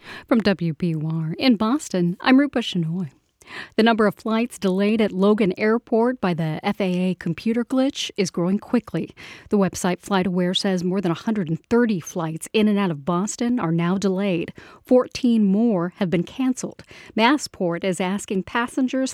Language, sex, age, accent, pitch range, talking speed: English, female, 40-59, American, 180-230 Hz, 150 wpm